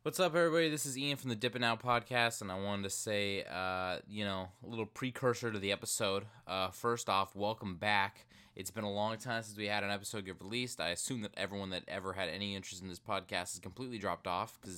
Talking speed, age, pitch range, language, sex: 240 wpm, 20-39, 90-115 Hz, English, male